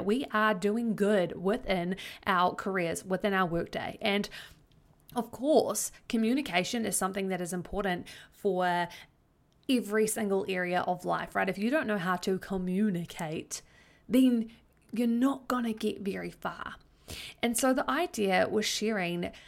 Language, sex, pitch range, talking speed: English, female, 180-215 Hz, 145 wpm